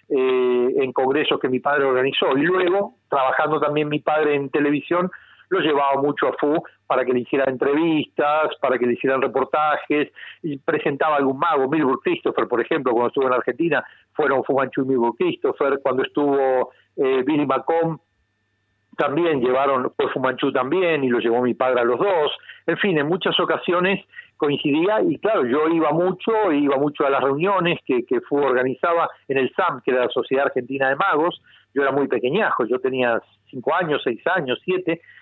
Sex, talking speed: male, 185 wpm